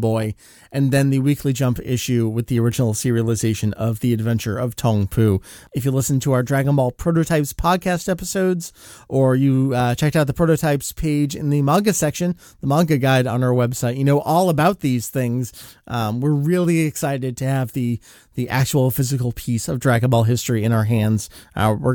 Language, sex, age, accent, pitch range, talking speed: English, male, 30-49, American, 120-155 Hz, 195 wpm